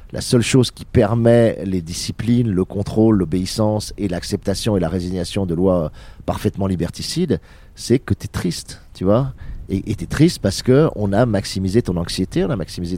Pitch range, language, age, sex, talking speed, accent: 90-115 Hz, French, 40-59, male, 175 wpm, French